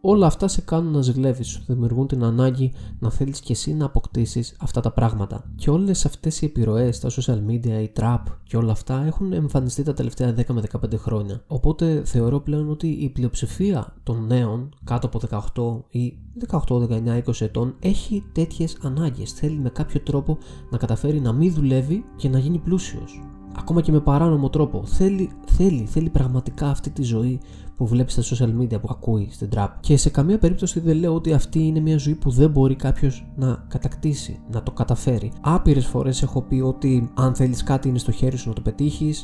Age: 20-39